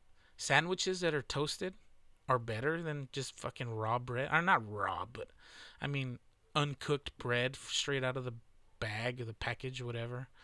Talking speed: 165 wpm